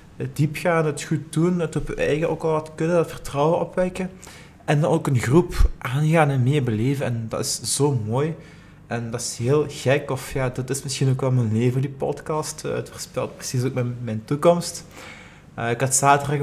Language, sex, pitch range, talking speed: Dutch, male, 115-150 Hz, 210 wpm